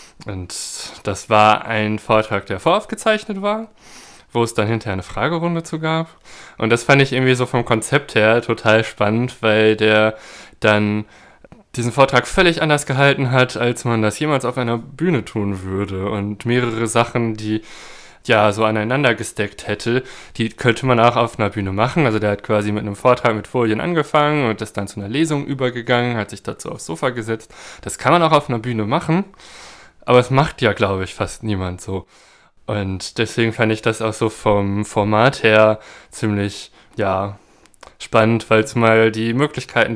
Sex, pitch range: male, 105-125 Hz